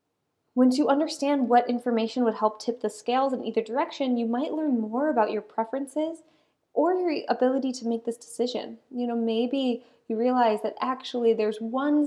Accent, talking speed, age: American, 180 wpm, 20-39